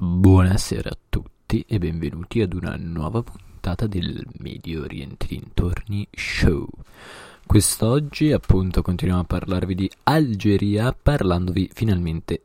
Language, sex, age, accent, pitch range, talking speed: Italian, male, 20-39, native, 85-110 Hz, 110 wpm